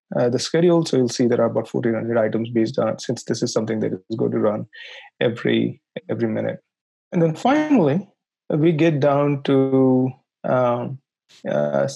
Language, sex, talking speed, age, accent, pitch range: English, male, 180 wpm, 20-39, Indian, 125-165 Hz